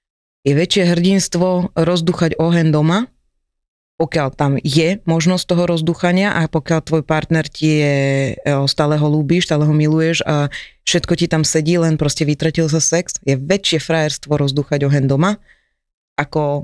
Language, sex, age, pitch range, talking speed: Slovak, female, 20-39, 145-190 Hz, 150 wpm